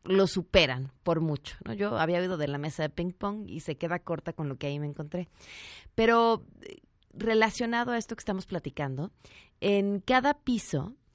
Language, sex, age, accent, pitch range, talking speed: Spanish, female, 30-49, Mexican, 155-205 Hz, 185 wpm